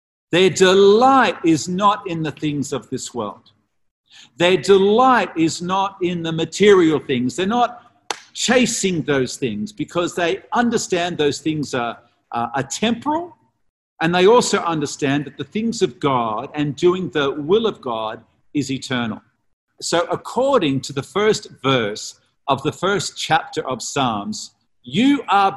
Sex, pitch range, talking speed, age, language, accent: male, 120-200 Hz, 145 wpm, 50-69, English, Australian